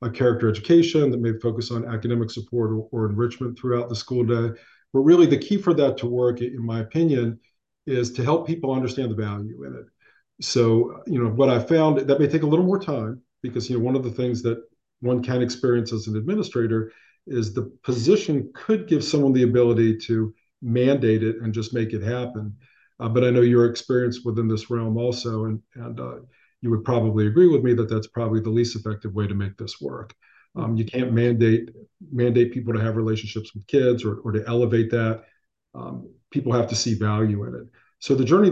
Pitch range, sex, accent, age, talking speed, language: 115-135 Hz, male, American, 40-59, 210 wpm, English